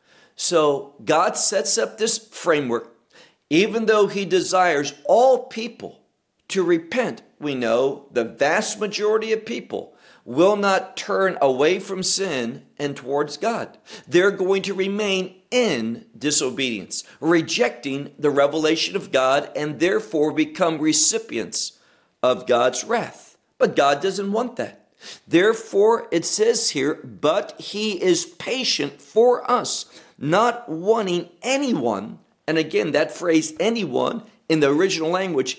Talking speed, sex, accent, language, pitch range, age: 125 wpm, male, American, English, 145-220 Hz, 50-69